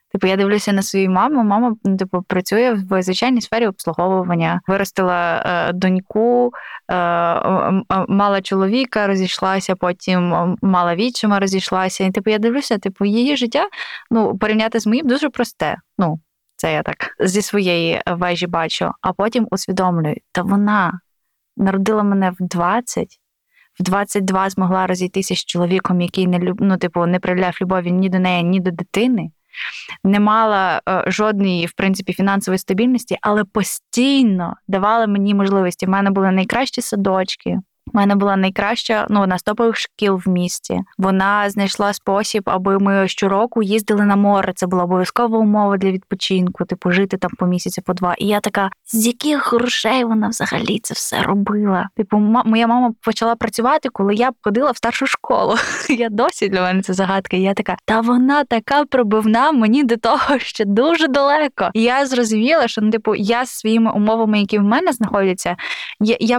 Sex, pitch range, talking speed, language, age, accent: female, 185-230 Hz, 160 wpm, Ukrainian, 20-39, native